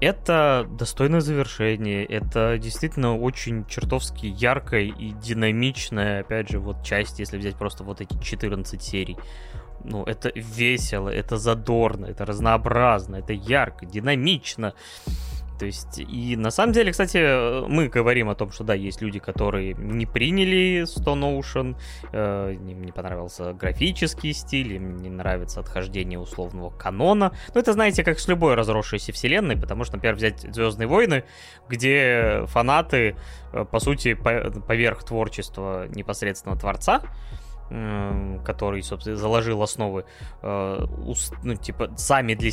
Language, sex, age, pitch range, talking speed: Russian, male, 20-39, 100-140 Hz, 130 wpm